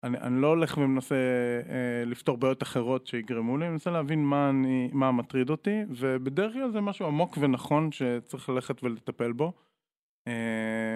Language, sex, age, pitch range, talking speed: Hebrew, male, 20-39, 120-150 Hz, 165 wpm